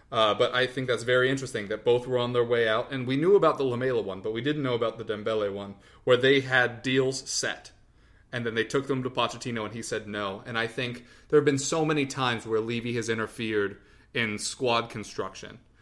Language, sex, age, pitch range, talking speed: English, male, 30-49, 115-140 Hz, 230 wpm